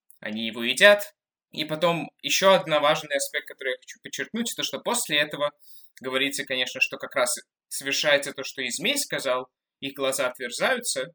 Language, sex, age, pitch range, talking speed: Russian, male, 20-39, 125-155 Hz, 165 wpm